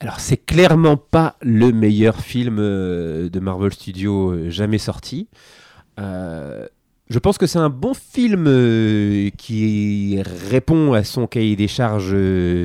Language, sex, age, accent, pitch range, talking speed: French, male, 30-49, French, 100-130 Hz, 130 wpm